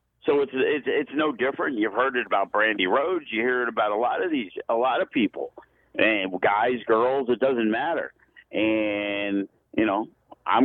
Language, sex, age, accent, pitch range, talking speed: English, male, 50-69, American, 105-150 Hz, 190 wpm